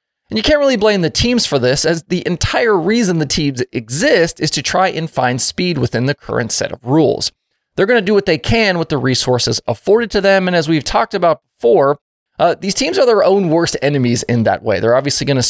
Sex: male